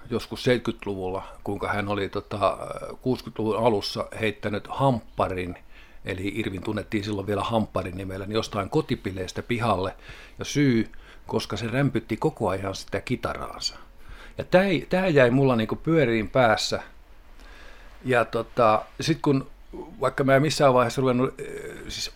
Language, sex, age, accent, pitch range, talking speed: Finnish, male, 50-69, native, 105-140 Hz, 120 wpm